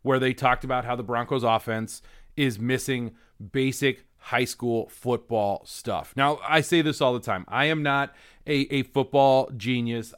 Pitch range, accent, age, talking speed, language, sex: 125-175 Hz, American, 30-49, 170 wpm, English, male